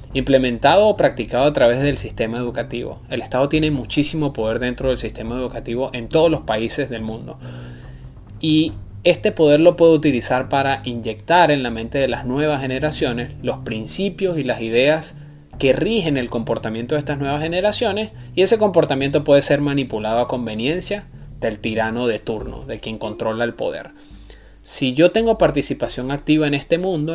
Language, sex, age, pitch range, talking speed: Spanish, male, 20-39, 120-150 Hz, 170 wpm